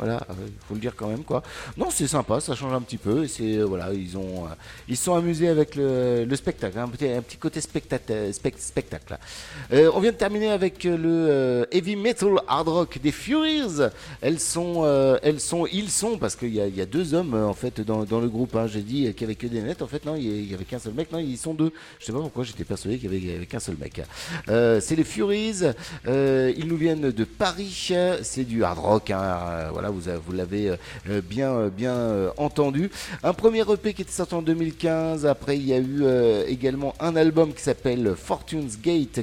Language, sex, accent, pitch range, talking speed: French, male, French, 110-165 Hz, 225 wpm